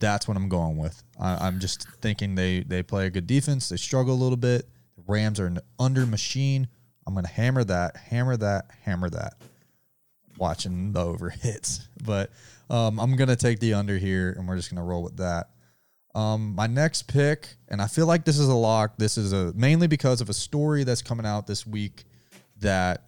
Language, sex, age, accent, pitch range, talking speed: English, male, 20-39, American, 95-125 Hz, 215 wpm